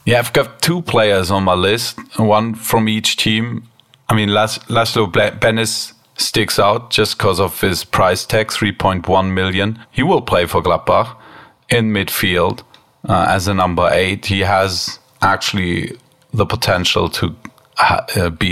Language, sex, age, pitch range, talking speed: English, male, 40-59, 95-110 Hz, 155 wpm